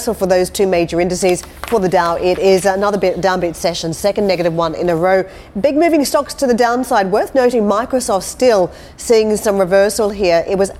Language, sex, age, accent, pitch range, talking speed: English, female, 40-59, Australian, 180-215 Hz, 195 wpm